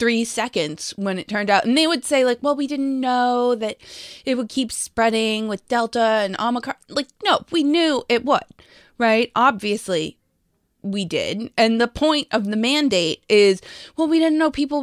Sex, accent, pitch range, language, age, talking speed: female, American, 230-280 Hz, English, 20-39, 185 wpm